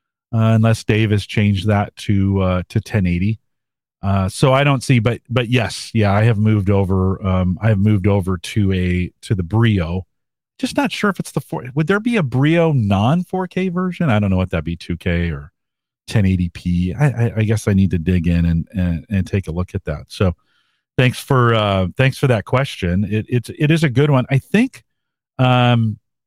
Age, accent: 40-59, American